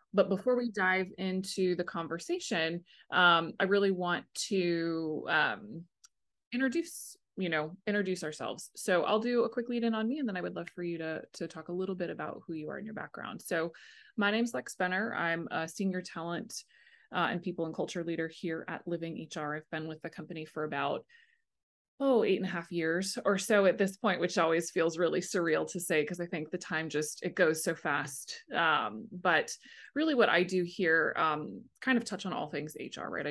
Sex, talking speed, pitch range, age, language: female, 215 wpm, 160-200 Hz, 20-39, English